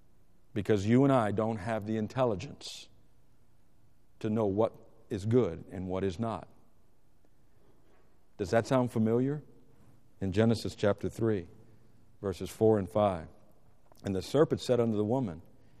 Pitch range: 95-115 Hz